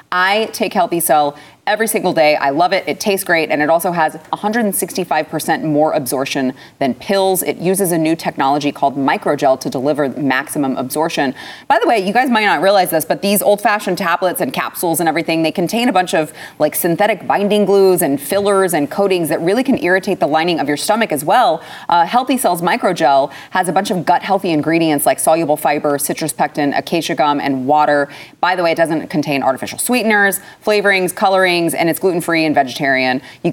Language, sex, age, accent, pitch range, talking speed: English, female, 30-49, American, 150-195 Hz, 195 wpm